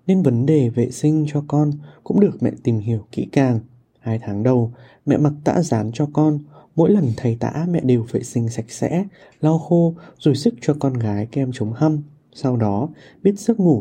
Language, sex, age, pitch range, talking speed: Vietnamese, male, 20-39, 120-150 Hz, 210 wpm